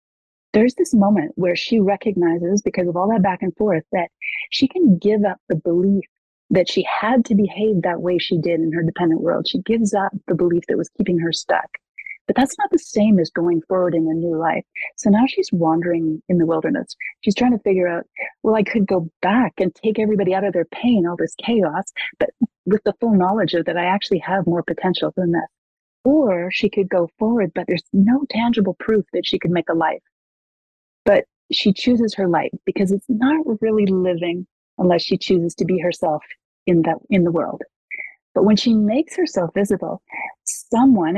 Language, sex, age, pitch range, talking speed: English, female, 30-49, 175-215 Hz, 205 wpm